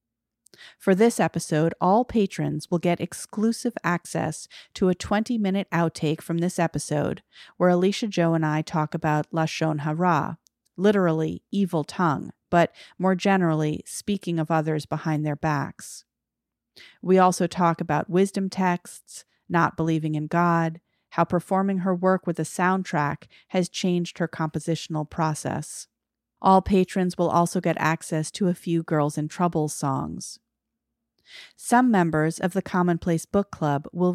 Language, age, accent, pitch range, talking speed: English, 40-59, American, 160-185 Hz, 140 wpm